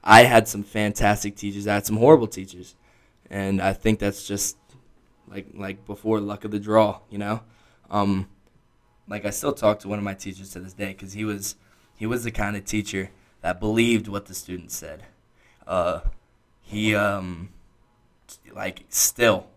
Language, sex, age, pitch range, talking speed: English, male, 10-29, 100-110 Hz, 175 wpm